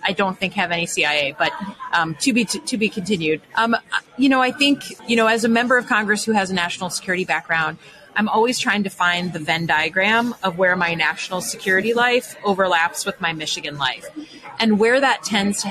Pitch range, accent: 170-205 Hz, American